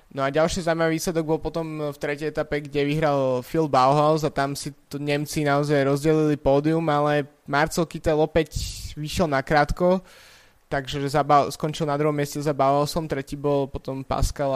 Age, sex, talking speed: 20-39, male, 170 wpm